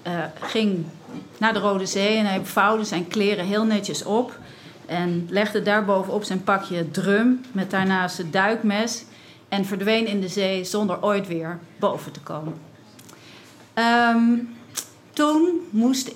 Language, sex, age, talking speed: Dutch, female, 40-59, 140 wpm